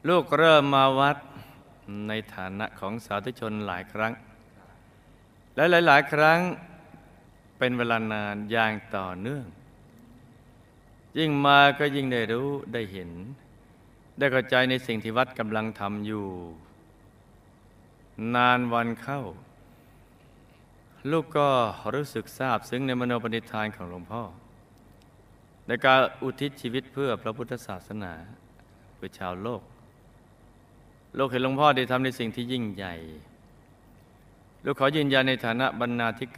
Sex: male